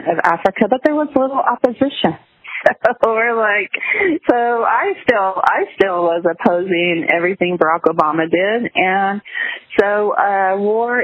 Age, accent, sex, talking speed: 40-59, American, female, 135 wpm